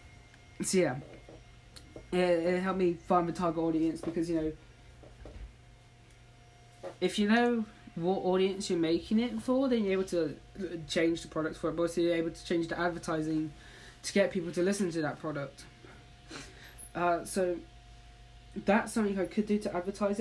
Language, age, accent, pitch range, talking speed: English, 10-29, British, 165-195 Hz, 165 wpm